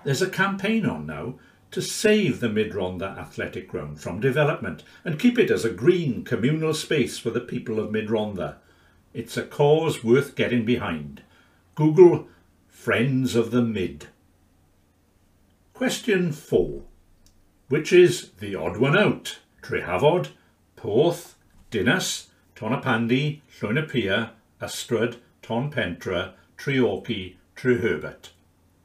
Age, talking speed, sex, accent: 60-79, 110 wpm, male, British